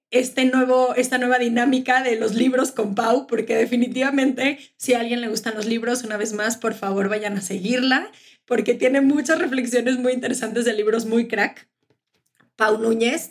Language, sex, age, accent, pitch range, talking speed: Spanish, female, 20-39, Mexican, 215-270 Hz, 175 wpm